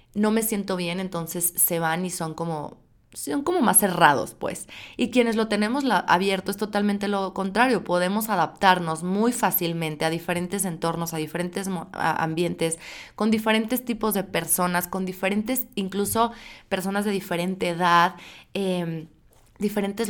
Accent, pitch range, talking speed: Mexican, 165-200 Hz, 145 wpm